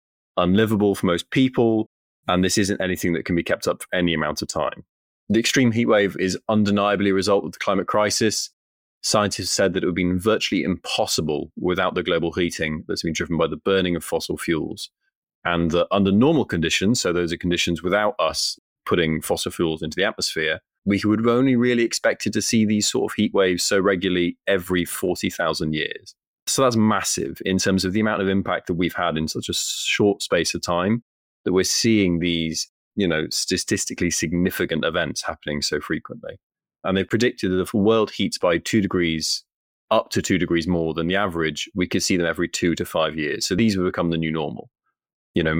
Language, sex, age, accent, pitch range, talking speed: English, male, 30-49, British, 85-105 Hz, 205 wpm